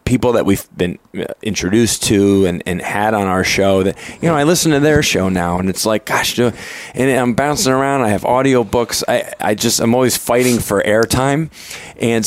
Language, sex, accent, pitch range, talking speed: English, male, American, 95-120 Hz, 205 wpm